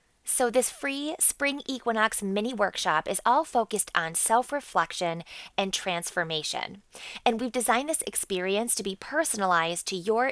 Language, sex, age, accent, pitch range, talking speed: English, female, 20-39, American, 185-245 Hz, 140 wpm